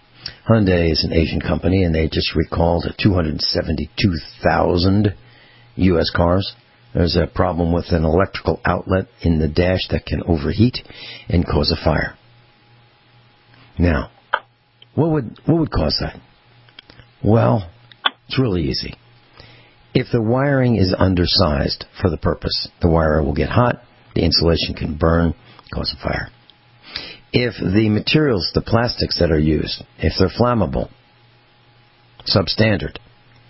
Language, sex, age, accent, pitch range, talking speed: English, male, 60-79, American, 80-120 Hz, 130 wpm